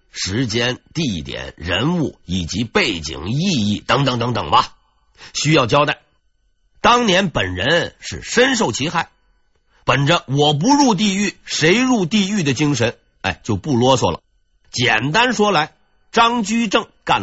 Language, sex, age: Chinese, male, 50-69